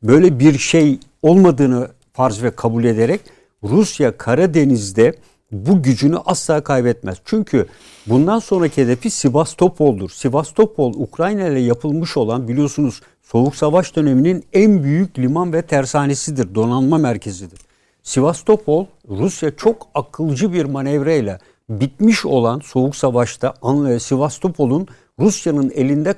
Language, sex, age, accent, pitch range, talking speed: Turkish, male, 60-79, native, 125-175 Hz, 110 wpm